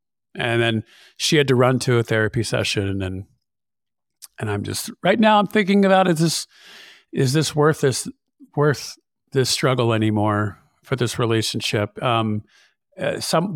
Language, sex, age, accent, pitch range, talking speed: English, male, 40-59, American, 110-135 Hz, 150 wpm